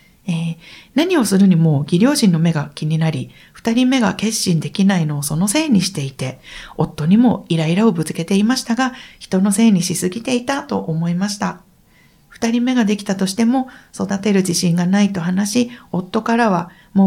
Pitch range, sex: 180-240 Hz, female